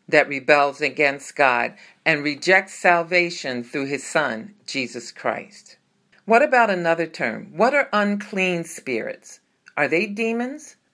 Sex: female